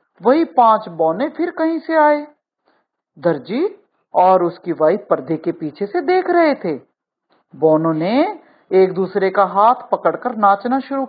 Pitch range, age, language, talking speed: 185-285 Hz, 50-69, Hindi, 140 wpm